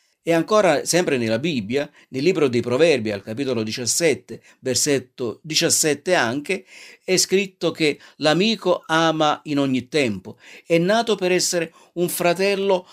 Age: 50-69